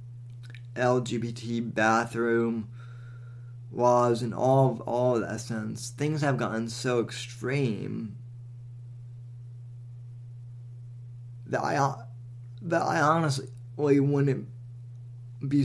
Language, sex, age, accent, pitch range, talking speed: English, male, 20-39, American, 120-125 Hz, 85 wpm